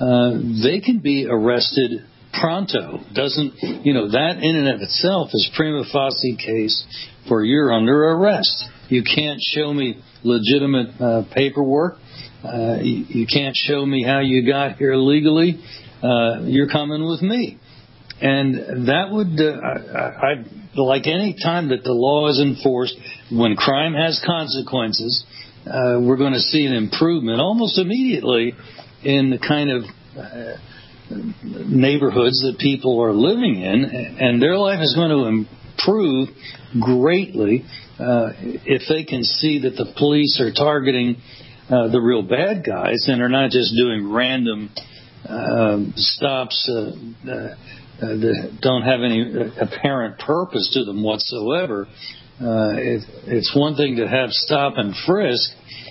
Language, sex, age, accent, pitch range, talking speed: English, male, 60-79, American, 120-145 Hz, 140 wpm